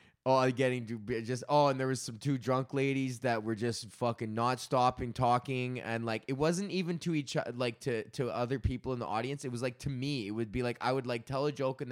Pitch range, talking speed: 125-180 Hz, 250 wpm